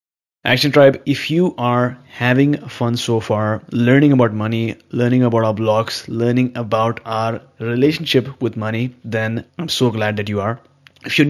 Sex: male